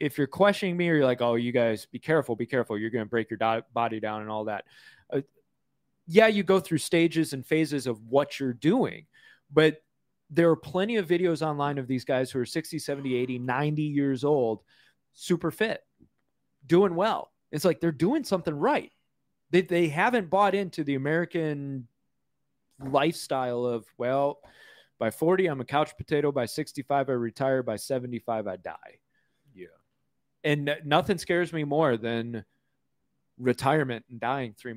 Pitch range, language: 120-165 Hz, English